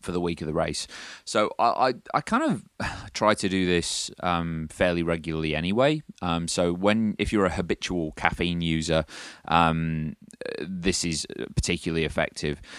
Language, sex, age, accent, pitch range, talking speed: English, male, 30-49, British, 75-90 Hz, 160 wpm